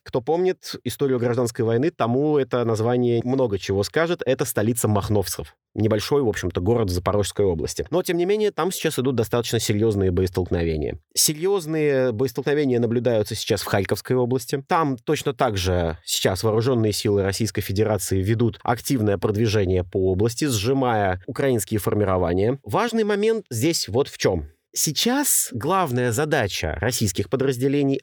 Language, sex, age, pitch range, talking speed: Russian, male, 30-49, 110-150 Hz, 140 wpm